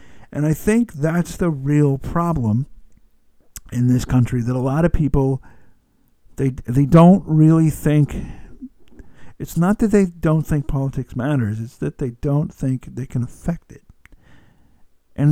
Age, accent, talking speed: 50-69, American, 150 wpm